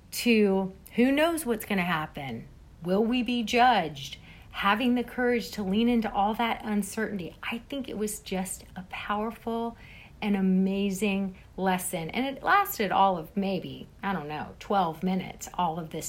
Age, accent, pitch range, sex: 40-59, American, 190-240 Hz, female